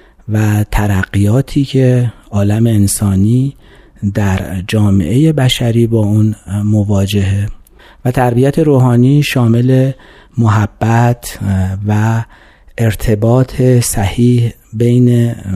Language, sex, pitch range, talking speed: Persian, male, 105-130 Hz, 75 wpm